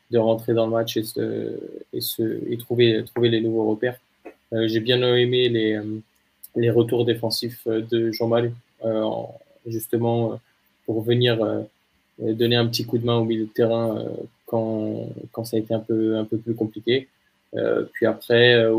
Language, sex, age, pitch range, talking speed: French, male, 20-39, 110-120 Hz, 180 wpm